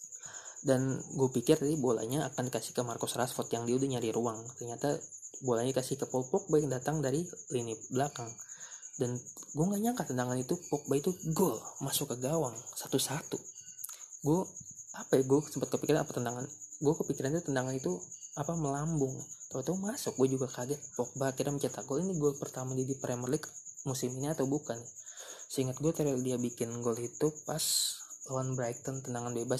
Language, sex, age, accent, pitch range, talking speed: Indonesian, male, 20-39, native, 120-145 Hz, 180 wpm